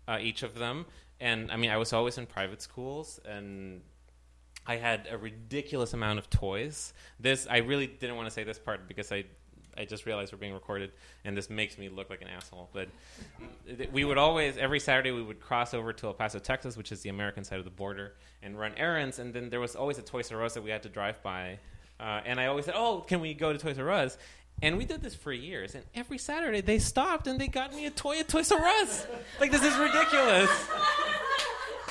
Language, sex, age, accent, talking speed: English, male, 20-39, American, 235 wpm